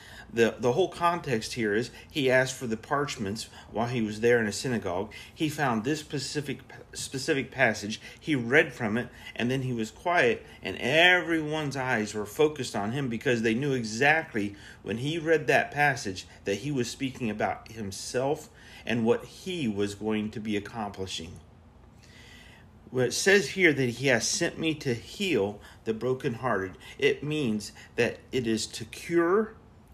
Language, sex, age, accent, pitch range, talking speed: English, male, 40-59, American, 110-145 Hz, 165 wpm